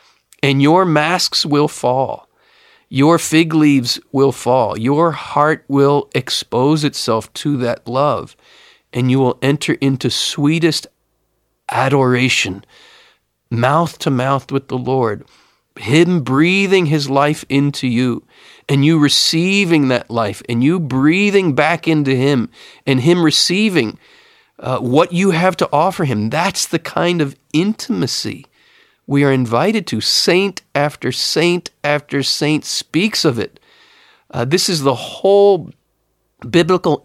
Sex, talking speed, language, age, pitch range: male, 130 wpm, English, 40-59, 125-170 Hz